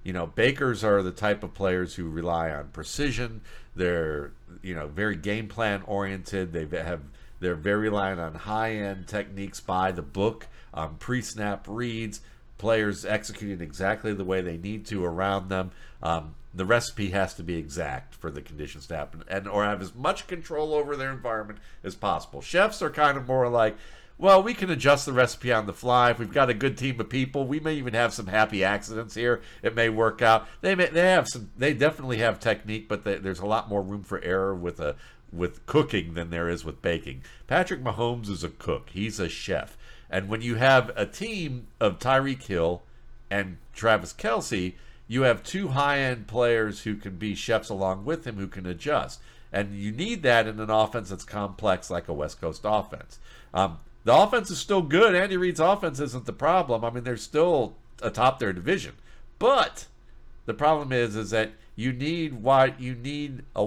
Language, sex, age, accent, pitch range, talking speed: English, male, 50-69, American, 95-125 Hz, 195 wpm